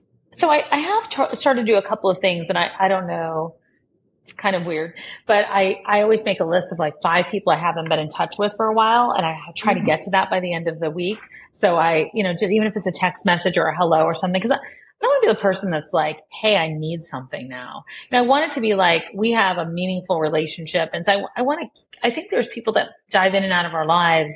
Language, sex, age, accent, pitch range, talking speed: English, female, 30-49, American, 170-205 Hz, 280 wpm